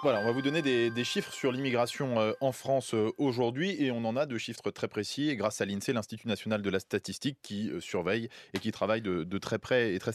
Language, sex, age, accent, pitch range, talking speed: French, male, 20-39, French, 110-150 Hz, 240 wpm